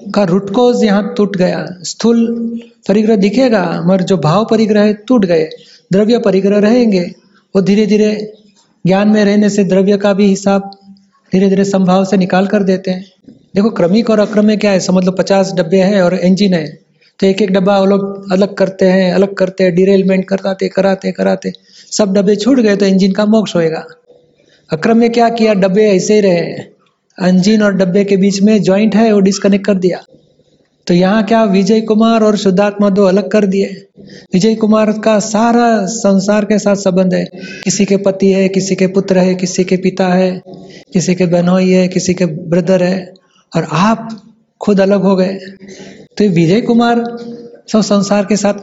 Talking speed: 185 wpm